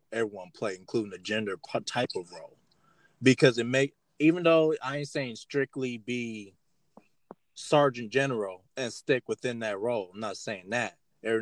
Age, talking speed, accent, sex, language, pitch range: 20-39, 160 wpm, American, male, English, 115-140 Hz